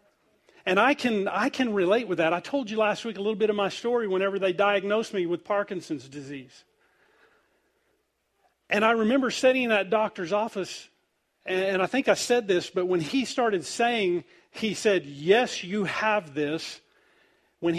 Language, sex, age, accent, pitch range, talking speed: English, male, 40-59, American, 180-240 Hz, 175 wpm